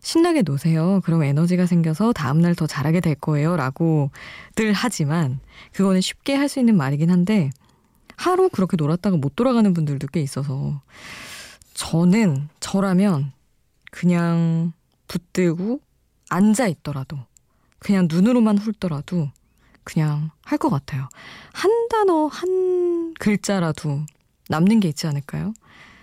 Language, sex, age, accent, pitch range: Korean, female, 20-39, native, 150-210 Hz